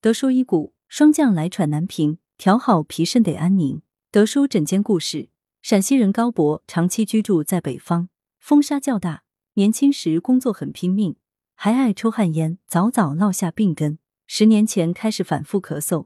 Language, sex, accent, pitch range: Chinese, female, native, 160-225 Hz